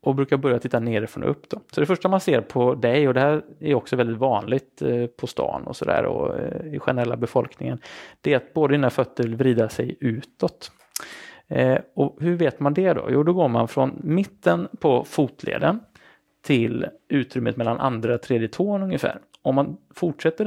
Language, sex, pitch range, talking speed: Swedish, male, 120-160 Hz, 185 wpm